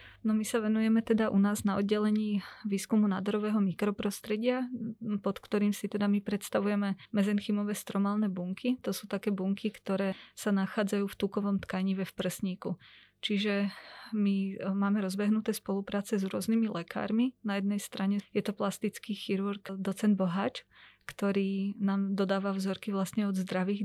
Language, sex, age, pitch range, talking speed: Slovak, female, 20-39, 195-210 Hz, 145 wpm